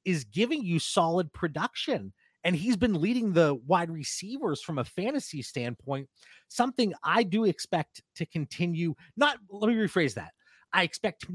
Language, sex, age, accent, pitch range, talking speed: English, male, 30-49, American, 140-200 Hz, 160 wpm